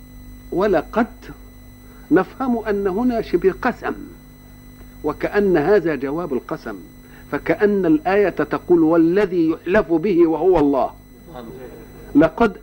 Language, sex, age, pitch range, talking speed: Arabic, male, 50-69, 170-245 Hz, 90 wpm